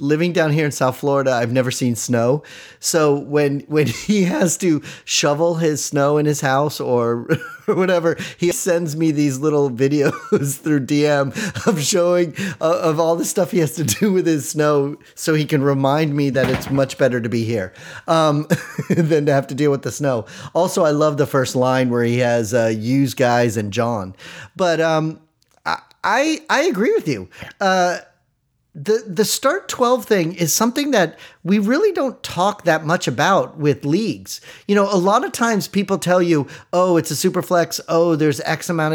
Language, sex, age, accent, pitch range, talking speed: English, male, 30-49, American, 140-180 Hz, 195 wpm